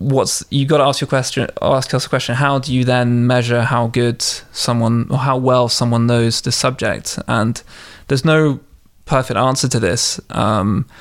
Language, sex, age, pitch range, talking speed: English, male, 20-39, 115-130 Hz, 170 wpm